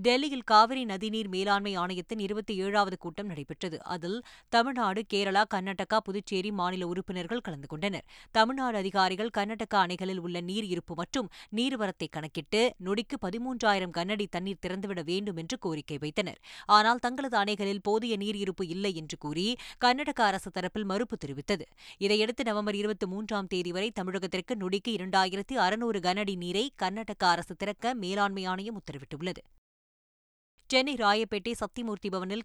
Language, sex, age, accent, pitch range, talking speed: Tamil, female, 20-39, native, 180-220 Hz, 130 wpm